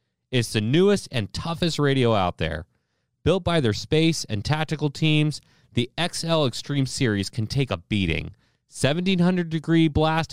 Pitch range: 105-155 Hz